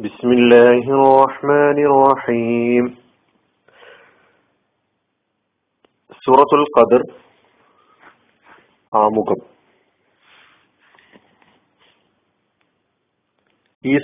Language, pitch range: Malayalam, 125-155 Hz